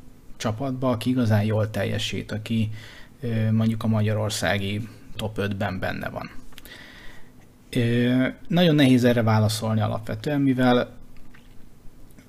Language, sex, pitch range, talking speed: Hungarian, male, 110-125 Hz, 95 wpm